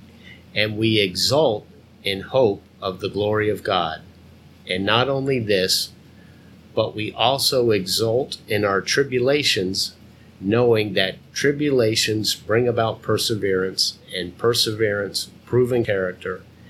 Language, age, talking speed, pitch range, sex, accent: English, 50-69, 110 wpm, 95-120 Hz, male, American